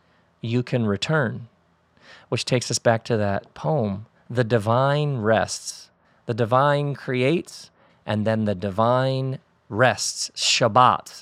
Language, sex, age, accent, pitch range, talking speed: English, male, 40-59, American, 115-155 Hz, 120 wpm